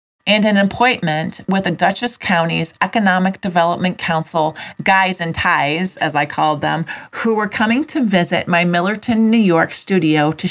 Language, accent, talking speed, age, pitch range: English, American, 160 wpm, 40-59, 170-215 Hz